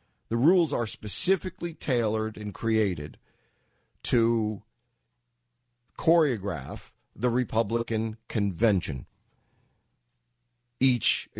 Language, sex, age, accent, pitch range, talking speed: English, male, 50-69, American, 100-135 Hz, 70 wpm